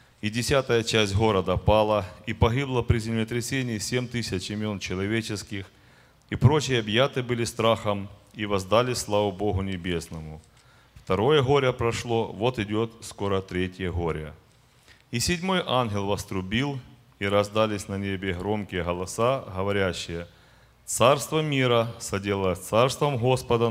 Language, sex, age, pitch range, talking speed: Russian, male, 30-49, 100-120 Hz, 120 wpm